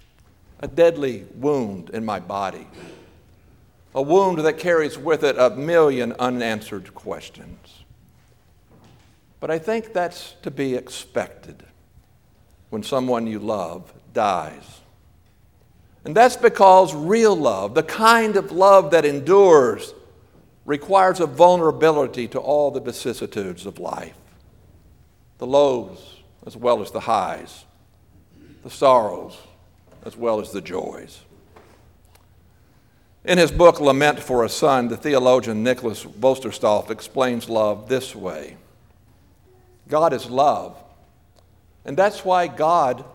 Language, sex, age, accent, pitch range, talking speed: English, male, 60-79, American, 100-165 Hz, 115 wpm